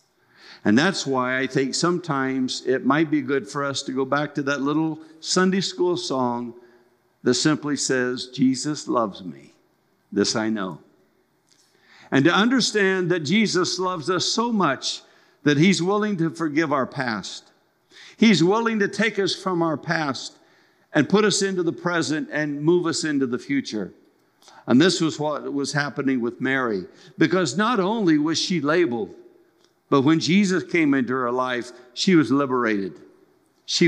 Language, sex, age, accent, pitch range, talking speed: English, male, 60-79, American, 135-185 Hz, 160 wpm